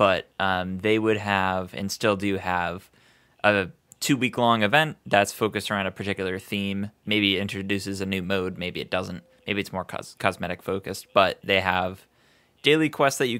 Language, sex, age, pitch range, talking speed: English, male, 20-39, 95-105 Hz, 170 wpm